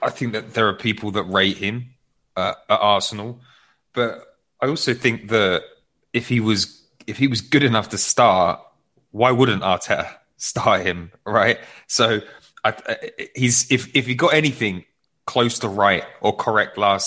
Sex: male